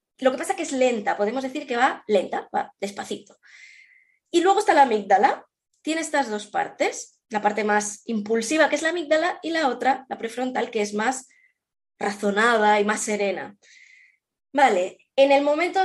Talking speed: 180 wpm